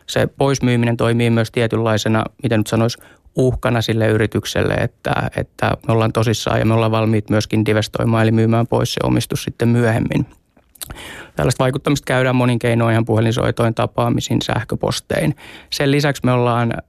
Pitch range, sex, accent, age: 115-130 Hz, male, native, 20-39